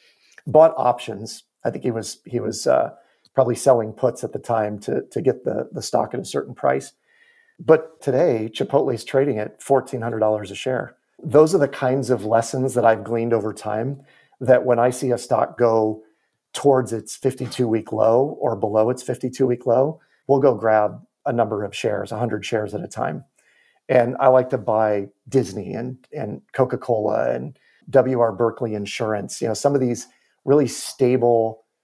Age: 40-59